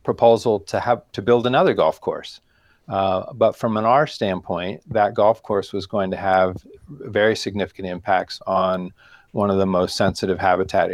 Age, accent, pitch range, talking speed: 40-59, American, 95-110 Hz, 170 wpm